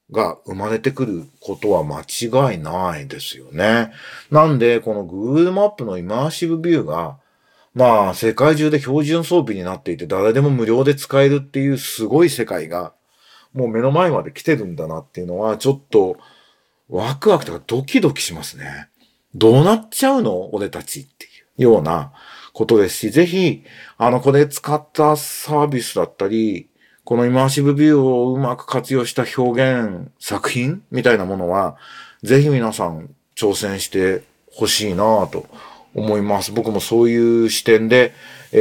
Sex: male